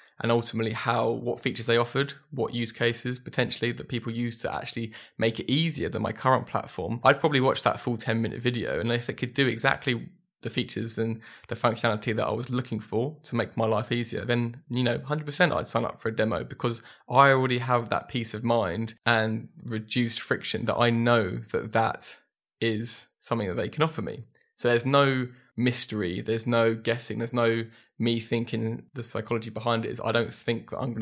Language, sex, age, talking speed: English, male, 20-39, 205 wpm